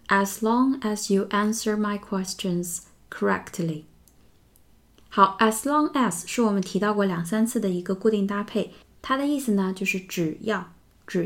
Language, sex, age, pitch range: Chinese, female, 20-39, 175-220 Hz